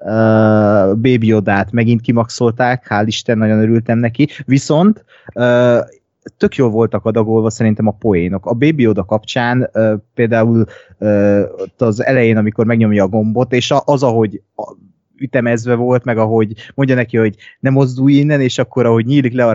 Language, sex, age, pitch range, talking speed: Hungarian, male, 20-39, 105-125 Hz, 165 wpm